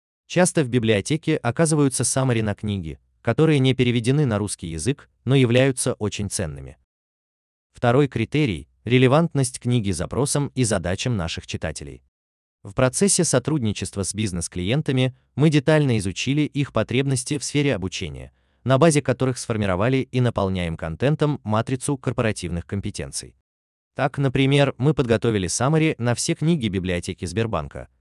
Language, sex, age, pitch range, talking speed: Russian, male, 20-39, 90-135 Hz, 125 wpm